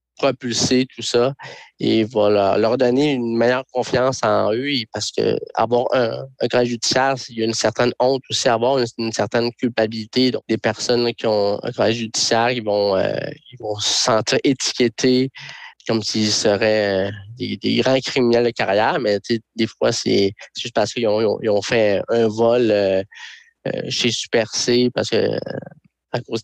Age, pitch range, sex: 20-39, 105-125 Hz, male